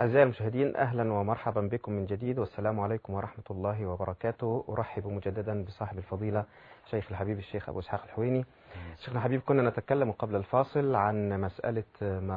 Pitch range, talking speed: 100-115 Hz, 150 wpm